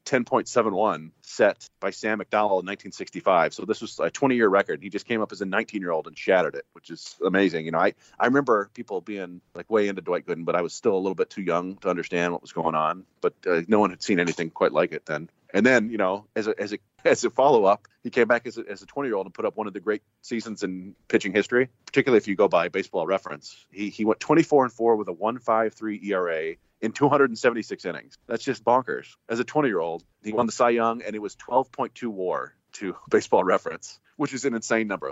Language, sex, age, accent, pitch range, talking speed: English, male, 30-49, American, 95-130 Hz, 235 wpm